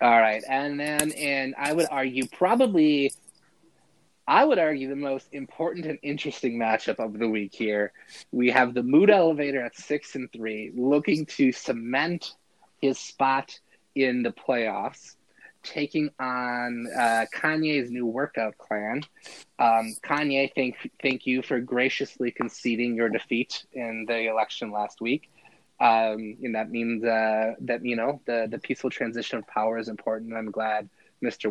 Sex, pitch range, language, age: male, 115-150 Hz, English, 20-39